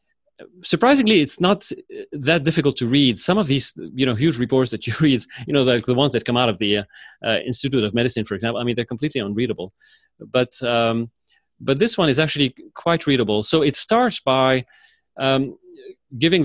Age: 30-49